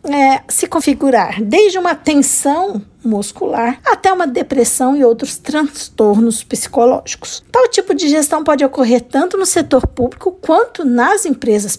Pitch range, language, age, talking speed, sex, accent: 235-345 Hz, Portuguese, 50-69, 130 wpm, female, Brazilian